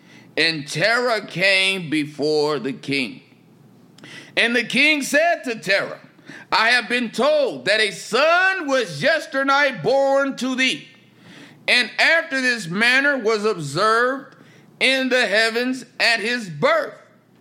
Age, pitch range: 50-69, 195-275 Hz